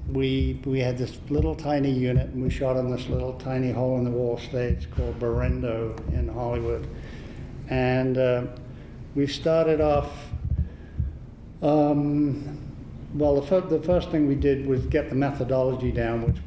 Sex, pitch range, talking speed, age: male, 125-140 Hz, 155 wpm, 50-69